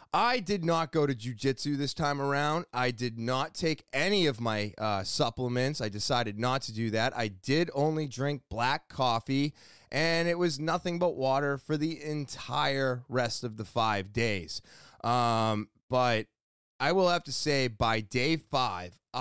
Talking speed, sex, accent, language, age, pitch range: 170 wpm, male, American, English, 20-39, 115-170 Hz